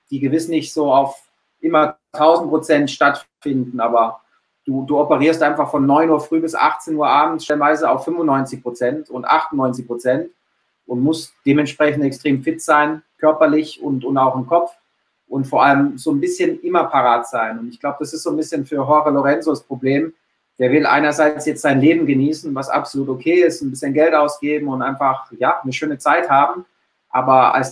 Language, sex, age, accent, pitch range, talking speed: German, male, 30-49, German, 135-155 Hz, 190 wpm